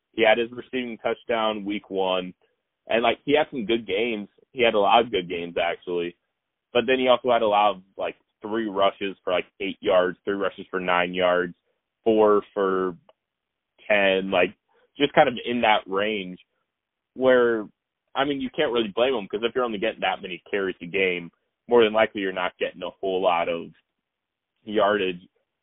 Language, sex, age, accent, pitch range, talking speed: English, male, 20-39, American, 95-120 Hz, 190 wpm